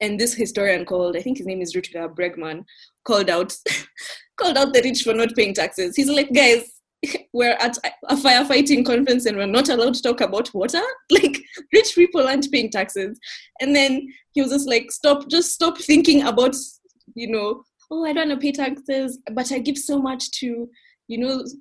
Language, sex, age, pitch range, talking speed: English, female, 20-39, 180-280 Hz, 195 wpm